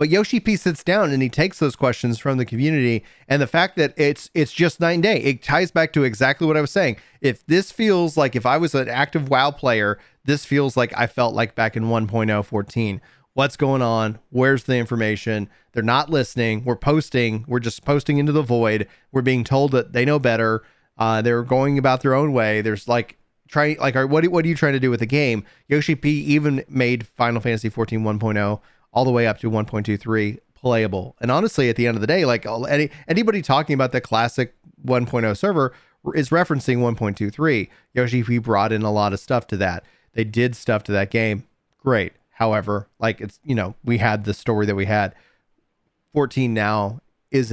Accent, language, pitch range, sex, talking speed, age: American, English, 110-145 Hz, male, 210 wpm, 30-49